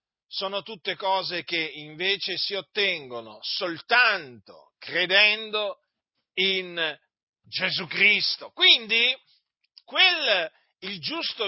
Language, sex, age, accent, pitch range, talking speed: Italian, male, 50-69, native, 155-235 Hz, 80 wpm